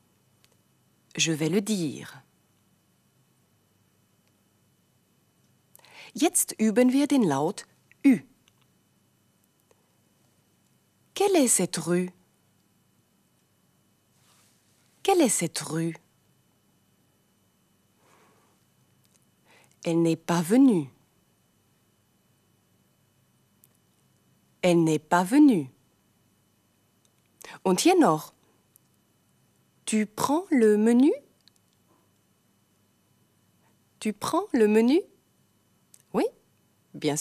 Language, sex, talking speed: German, female, 65 wpm